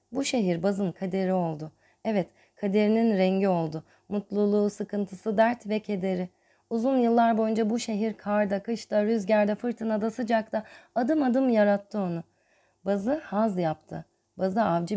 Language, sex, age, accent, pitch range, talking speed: Turkish, female, 30-49, native, 170-215 Hz, 130 wpm